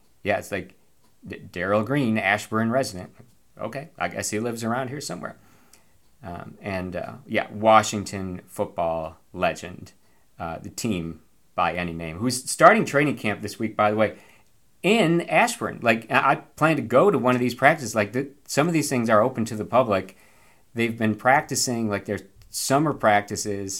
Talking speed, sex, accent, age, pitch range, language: 170 wpm, male, American, 50-69, 95-125 Hz, English